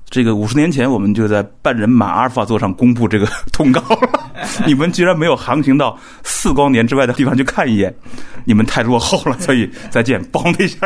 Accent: native